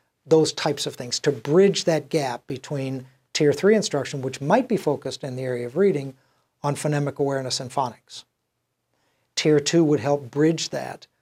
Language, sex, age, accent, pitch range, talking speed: English, male, 60-79, American, 130-155 Hz, 170 wpm